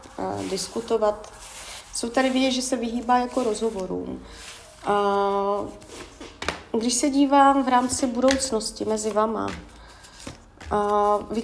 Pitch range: 210-255 Hz